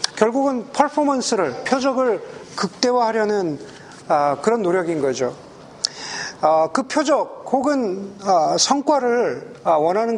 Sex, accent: male, native